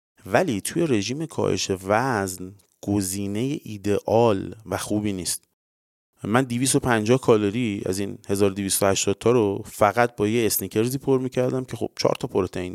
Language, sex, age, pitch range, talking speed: English, male, 30-49, 95-125 Hz, 135 wpm